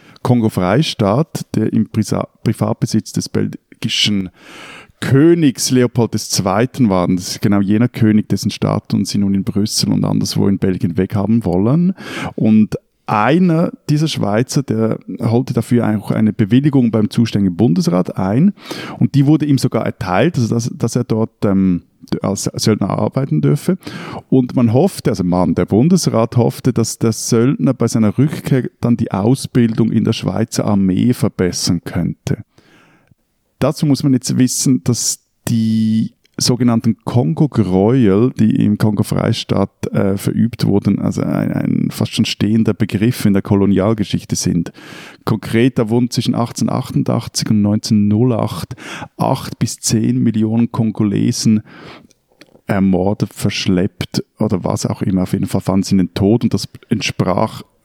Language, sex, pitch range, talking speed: German, male, 105-130 Hz, 140 wpm